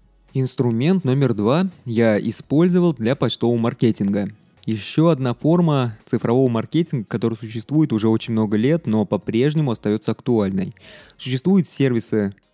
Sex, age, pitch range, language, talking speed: male, 20-39, 110-140 Hz, Russian, 120 wpm